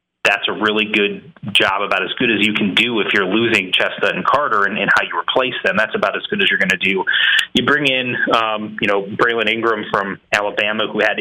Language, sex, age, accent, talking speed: English, male, 30-49, American, 240 wpm